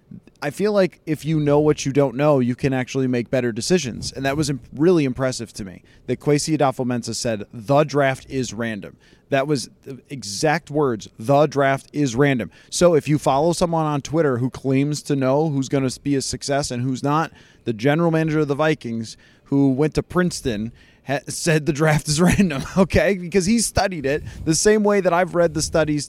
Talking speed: 205 wpm